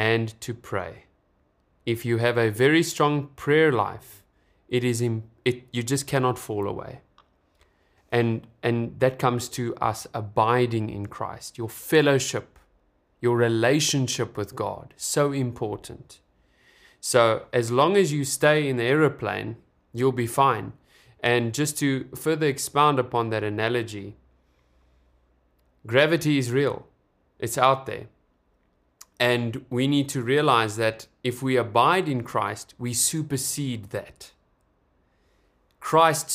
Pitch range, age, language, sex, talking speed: 110-140 Hz, 20-39, English, male, 130 wpm